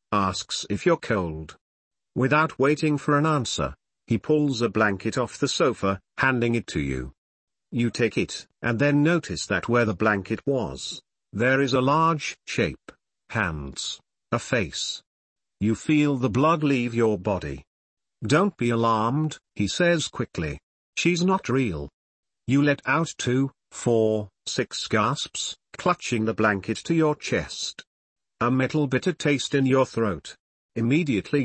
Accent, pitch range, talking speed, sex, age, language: British, 110-145 Hz, 145 wpm, male, 50-69, English